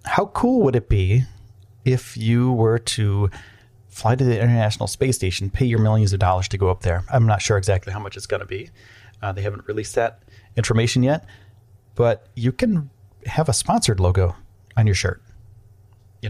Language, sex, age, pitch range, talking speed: English, male, 30-49, 100-125 Hz, 190 wpm